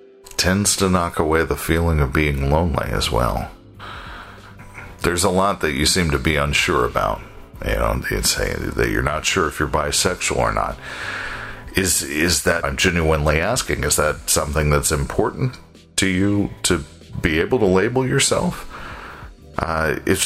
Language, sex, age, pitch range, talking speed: English, male, 50-69, 80-105 Hz, 165 wpm